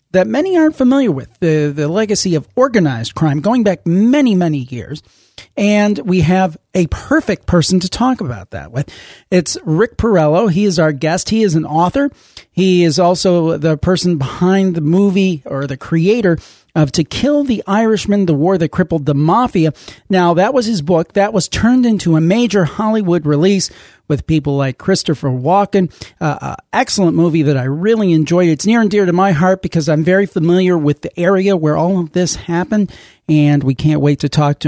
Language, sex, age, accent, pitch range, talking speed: English, male, 40-59, American, 155-205 Hz, 195 wpm